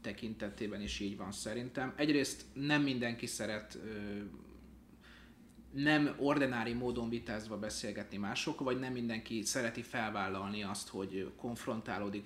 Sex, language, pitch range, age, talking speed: male, Hungarian, 105-135 Hz, 30-49, 115 wpm